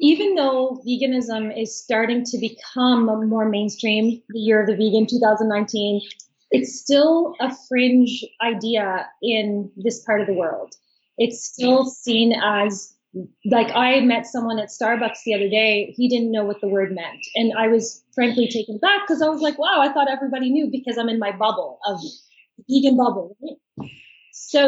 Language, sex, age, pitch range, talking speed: English, female, 20-39, 210-255 Hz, 175 wpm